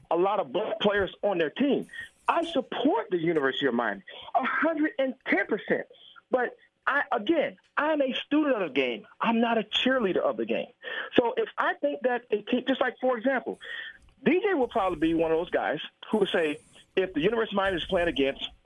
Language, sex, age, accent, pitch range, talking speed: English, male, 40-59, American, 165-265 Hz, 195 wpm